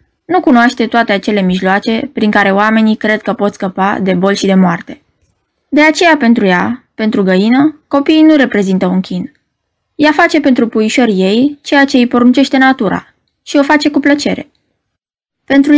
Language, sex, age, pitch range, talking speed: Romanian, female, 20-39, 205-275 Hz, 165 wpm